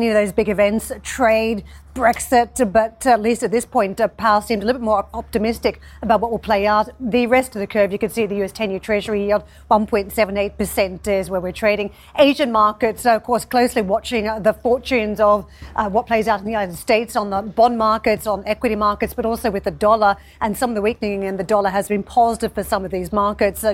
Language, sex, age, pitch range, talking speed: English, female, 40-59, 205-235 Hz, 220 wpm